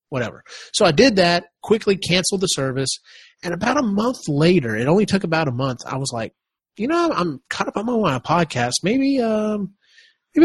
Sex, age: male, 30-49